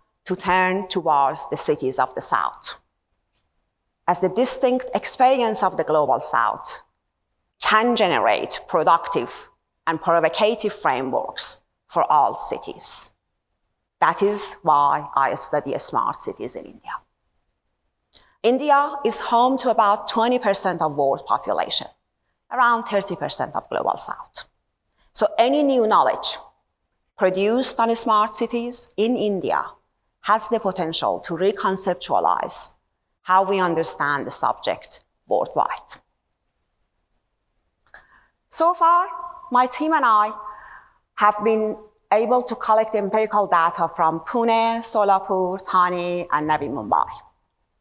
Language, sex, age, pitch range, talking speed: English, female, 40-59, 185-245 Hz, 110 wpm